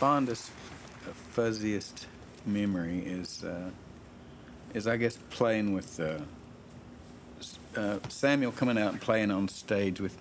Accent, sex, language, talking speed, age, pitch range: American, male, English, 120 wpm, 50-69, 90-115 Hz